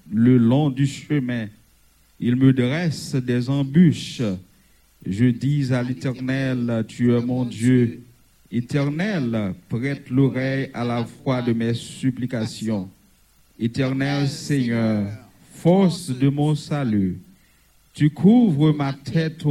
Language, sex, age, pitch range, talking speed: French, male, 50-69, 115-145 Hz, 110 wpm